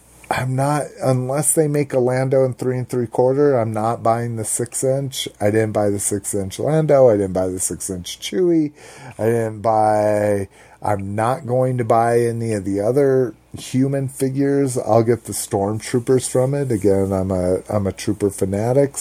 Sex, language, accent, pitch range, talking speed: male, English, American, 100-130 Hz, 185 wpm